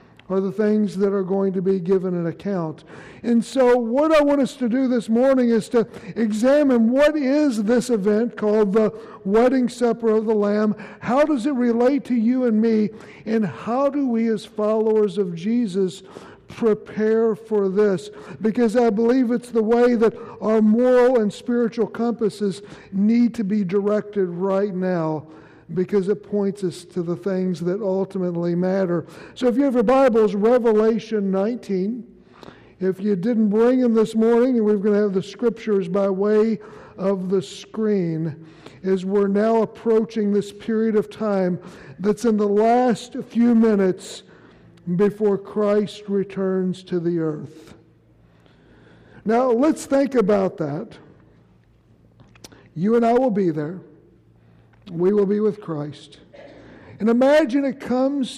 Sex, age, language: male, 60-79, English